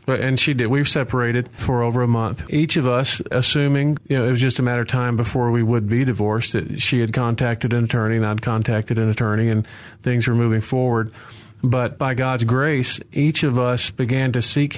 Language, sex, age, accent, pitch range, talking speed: English, male, 40-59, American, 115-130 Hz, 215 wpm